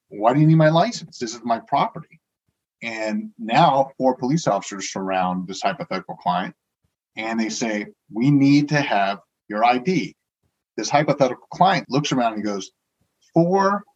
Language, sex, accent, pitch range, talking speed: English, male, American, 110-145 Hz, 160 wpm